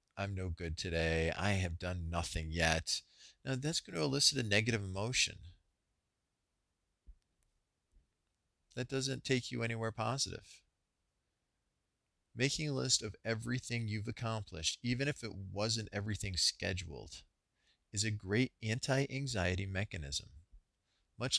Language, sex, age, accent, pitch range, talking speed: English, male, 40-59, American, 90-115 Hz, 120 wpm